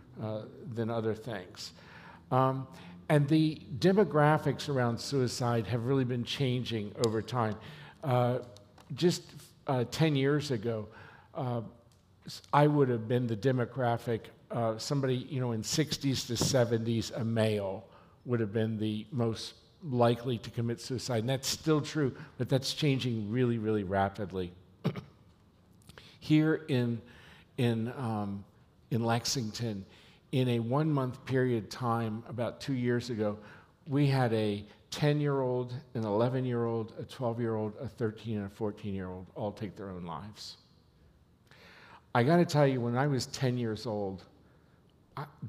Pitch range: 110-135 Hz